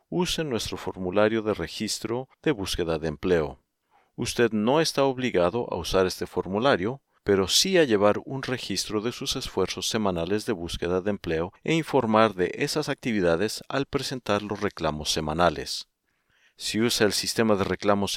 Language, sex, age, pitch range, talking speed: Spanish, male, 50-69, 95-130 Hz, 155 wpm